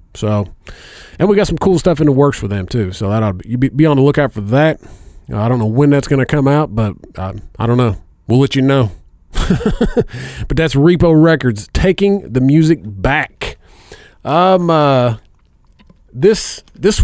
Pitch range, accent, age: 105-155 Hz, American, 40-59